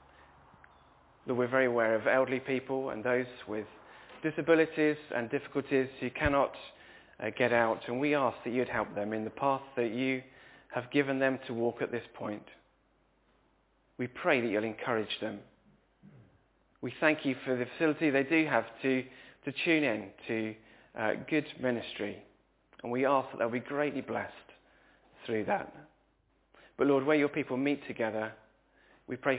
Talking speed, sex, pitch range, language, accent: 165 wpm, male, 115-135 Hz, English, British